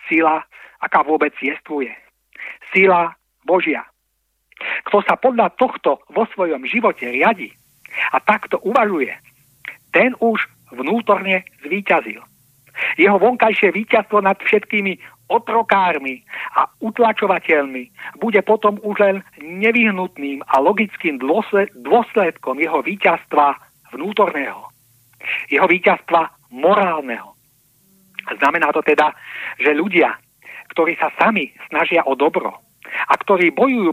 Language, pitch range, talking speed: Czech, 155-215 Hz, 105 wpm